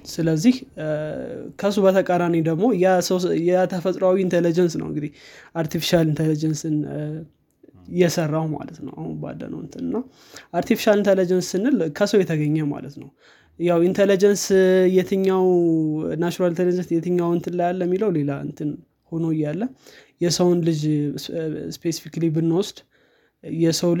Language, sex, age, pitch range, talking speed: Amharic, male, 20-39, 160-190 Hz, 105 wpm